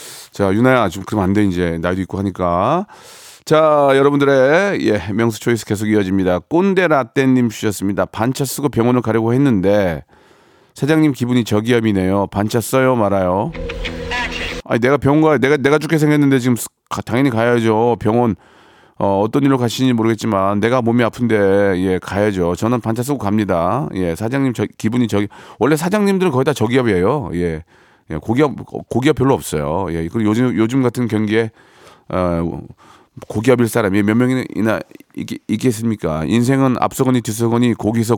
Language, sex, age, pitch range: Korean, male, 40-59, 100-130 Hz